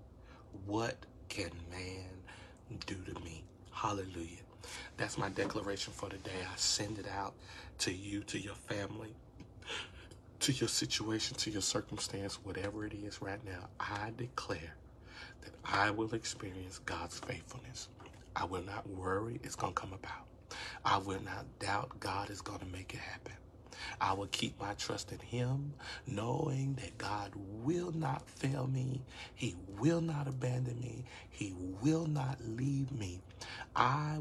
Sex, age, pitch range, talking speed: male, 40-59, 95-120 Hz, 150 wpm